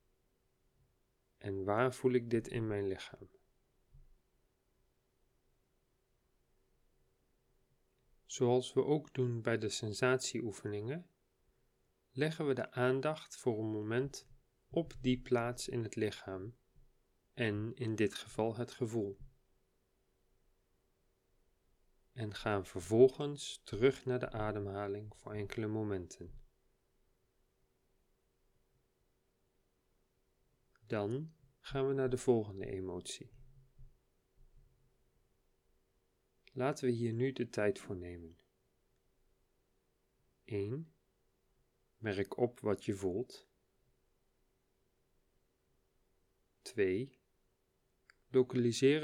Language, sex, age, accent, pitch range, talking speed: Dutch, male, 40-59, Dutch, 95-130 Hz, 80 wpm